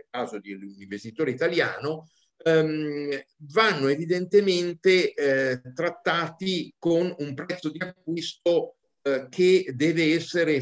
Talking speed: 100 wpm